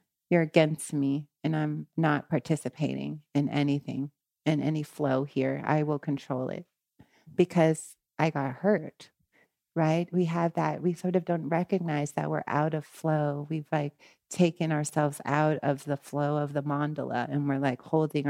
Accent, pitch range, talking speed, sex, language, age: American, 155-190 Hz, 165 wpm, female, English, 30-49